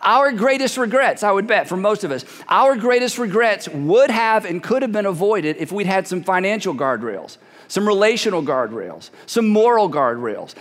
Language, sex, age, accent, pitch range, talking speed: English, male, 50-69, American, 185-235 Hz, 180 wpm